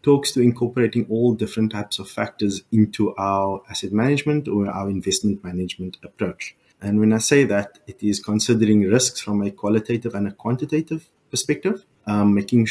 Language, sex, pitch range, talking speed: English, male, 100-120 Hz, 165 wpm